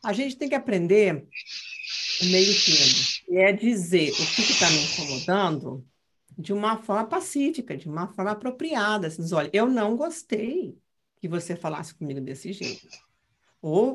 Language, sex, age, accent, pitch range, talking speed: Portuguese, female, 50-69, Brazilian, 170-235 Hz, 165 wpm